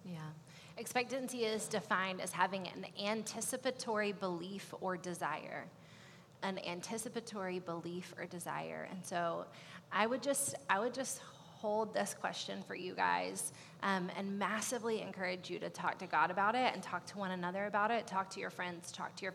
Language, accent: English, American